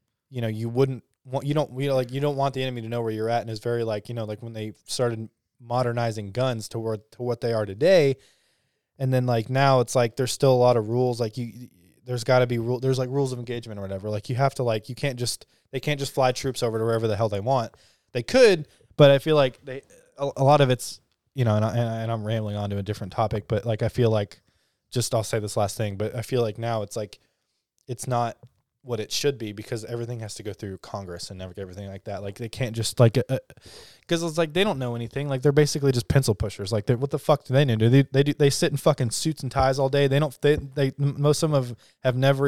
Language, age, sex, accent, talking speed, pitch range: English, 20-39, male, American, 275 wpm, 115-140 Hz